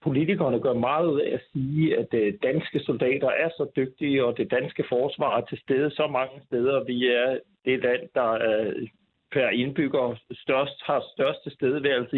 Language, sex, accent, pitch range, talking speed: Danish, male, native, 140-185 Hz, 165 wpm